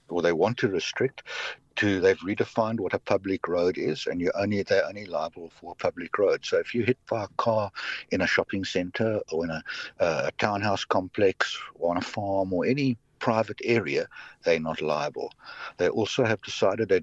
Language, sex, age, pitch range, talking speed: English, male, 60-79, 95-130 Hz, 200 wpm